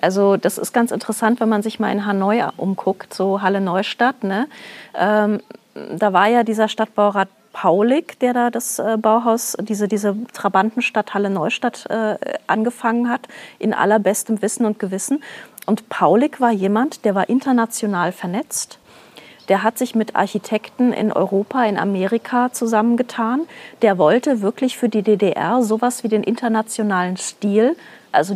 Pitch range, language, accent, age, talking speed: 200-240 Hz, German, German, 30-49, 140 wpm